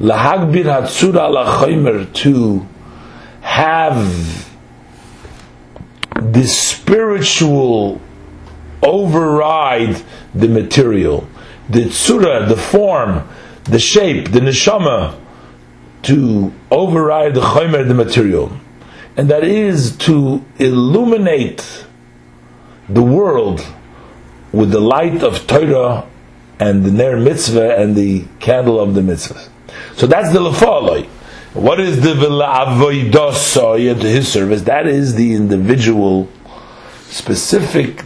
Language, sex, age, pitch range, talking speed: English, male, 50-69, 100-145 Hz, 90 wpm